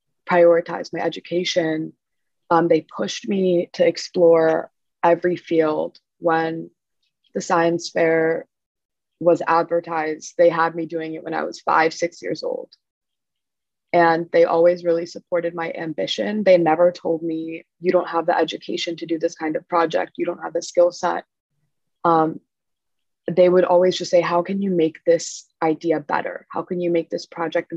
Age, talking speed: 20-39, 165 wpm